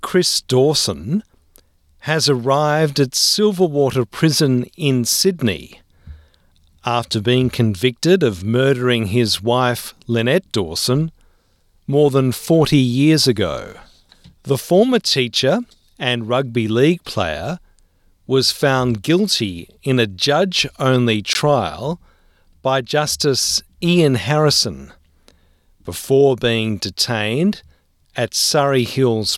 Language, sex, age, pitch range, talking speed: English, male, 40-59, 100-145 Hz, 95 wpm